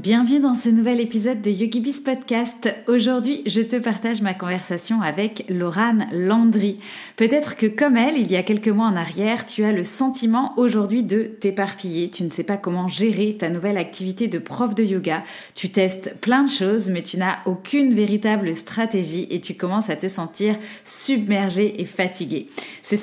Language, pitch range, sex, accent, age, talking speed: French, 185-235 Hz, female, French, 30-49, 180 wpm